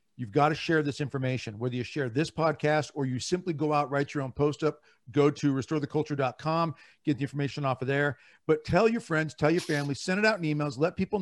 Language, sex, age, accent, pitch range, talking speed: English, male, 50-69, American, 145-175 Hz, 235 wpm